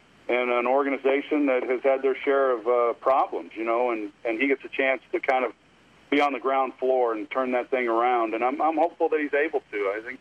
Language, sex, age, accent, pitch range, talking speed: English, male, 50-69, American, 125-150 Hz, 245 wpm